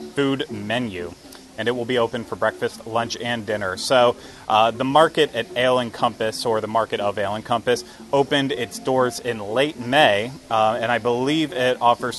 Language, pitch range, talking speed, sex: English, 115-130 Hz, 190 wpm, male